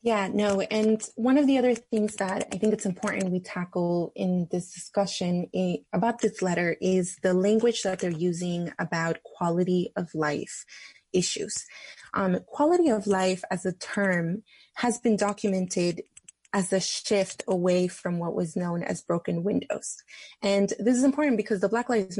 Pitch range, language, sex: 175-210 Hz, English, female